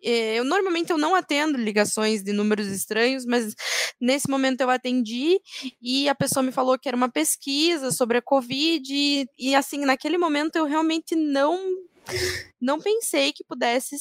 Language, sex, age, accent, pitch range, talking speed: Portuguese, female, 20-39, Brazilian, 235-315 Hz, 160 wpm